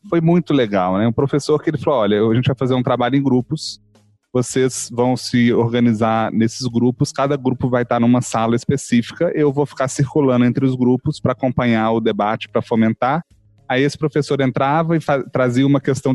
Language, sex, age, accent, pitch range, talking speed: Portuguese, male, 30-49, Brazilian, 110-145 Hz, 195 wpm